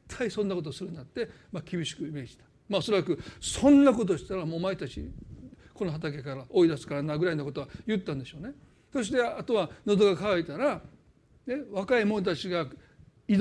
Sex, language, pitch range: male, Japanese, 165-235 Hz